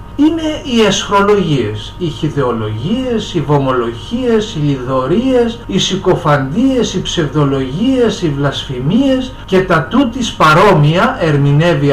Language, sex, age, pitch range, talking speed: Greek, male, 60-79, 145-215 Hz, 100 wpm